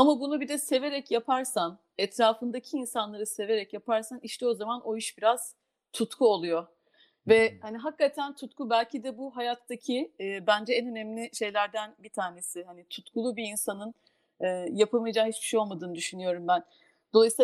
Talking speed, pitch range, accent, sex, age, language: 155 wpm, 210-255 Hz, native, female, 40-59, Turkish